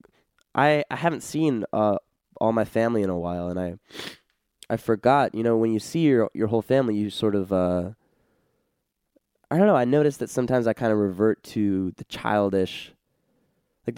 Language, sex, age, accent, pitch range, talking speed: English, male, 20-39, American, 95-115 Hz, 185 wpm